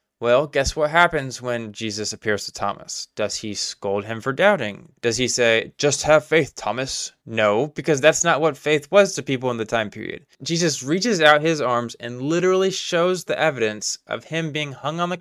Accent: American